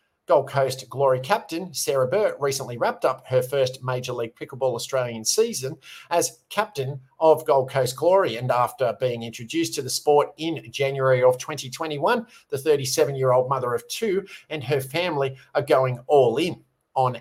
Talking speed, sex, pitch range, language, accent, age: 160 wpm, male, 130-185 Hz, English, Australian, 50-69